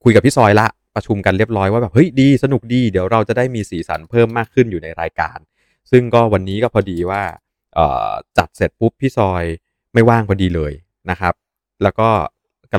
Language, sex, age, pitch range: Thai, male, 20-39, 95-120 Hz